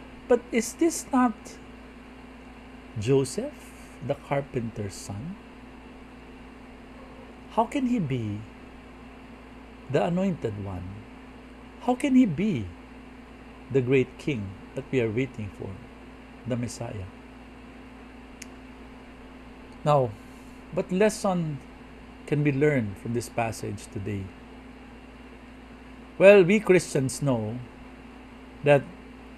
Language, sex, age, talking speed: English, male, 50-69, 90 wpm